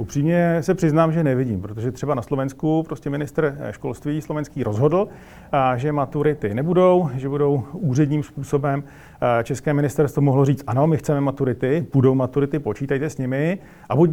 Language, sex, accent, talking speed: Czech, male, native, 155 wpm